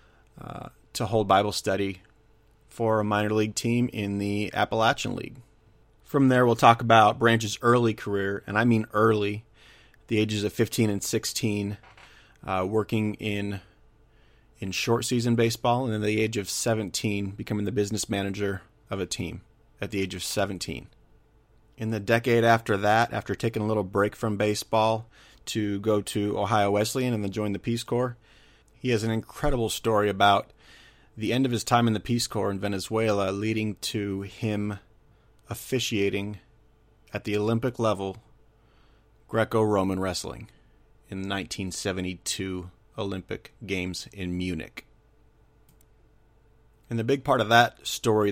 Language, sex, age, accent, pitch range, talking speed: English, male, 30-49, American, 100-115 Hz, 150 wpm